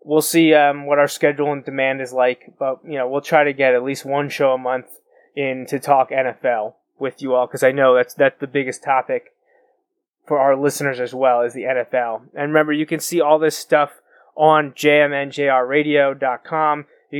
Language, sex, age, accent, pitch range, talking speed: English, male, 20-39, American, 135-155 Hz, 200 wpm